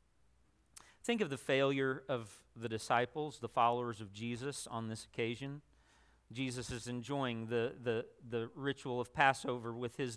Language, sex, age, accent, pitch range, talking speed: English, male, 40-59, American, 130-185 Hz, 150 wpm